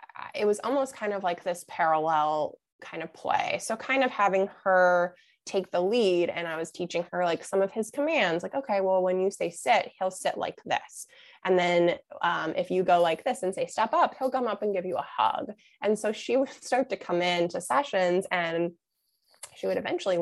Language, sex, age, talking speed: English, female, 20-39, 215 wpm